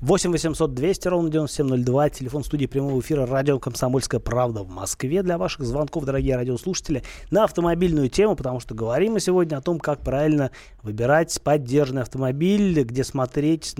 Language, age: Russian, 30-49